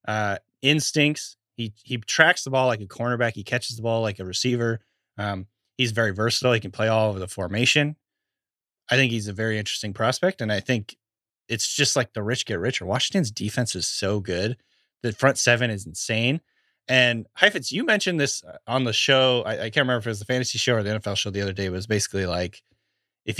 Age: 20-39